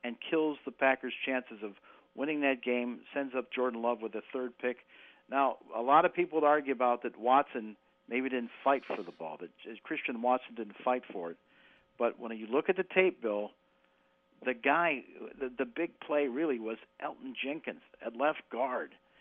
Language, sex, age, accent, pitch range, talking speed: English, male, 50-69, American, 120-155 Hz, 190 wpm